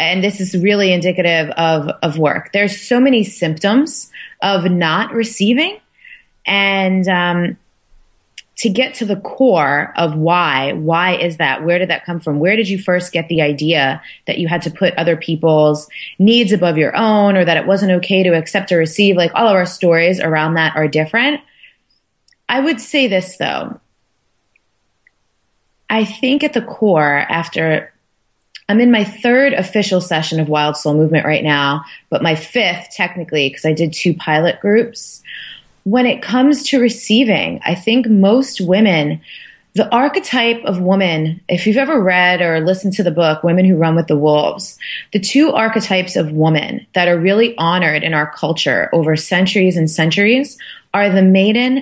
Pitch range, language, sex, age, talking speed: 160-215 Hz, English, female, 30-49, 170 wpm